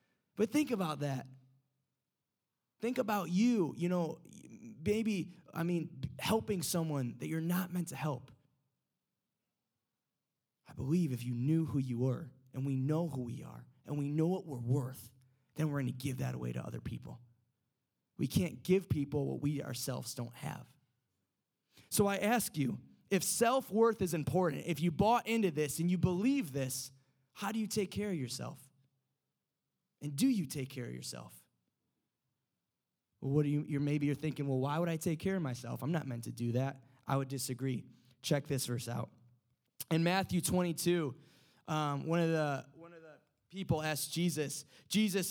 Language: English